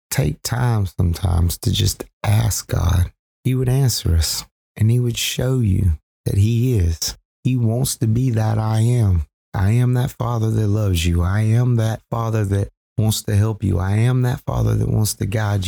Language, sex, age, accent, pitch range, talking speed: English, male, 30-49, American, 95-115 Hz, 190 wpm